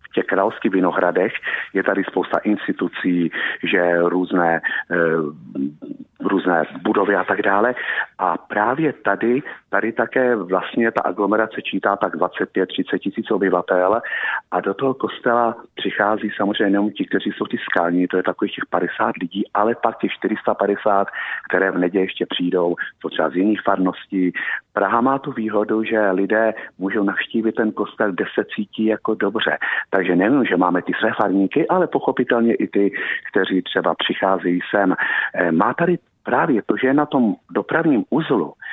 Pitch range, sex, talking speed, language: 95-115 Hz, male, 150 wpm, Czech